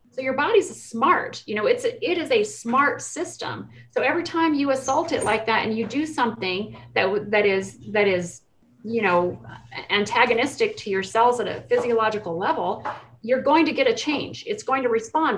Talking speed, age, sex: 190 wpm, 30-49, female